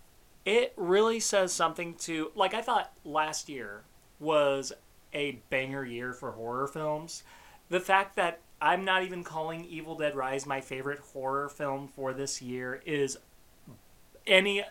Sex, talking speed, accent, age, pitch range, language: male, 145 wpm, American, 30-49, 135-170 Hz, English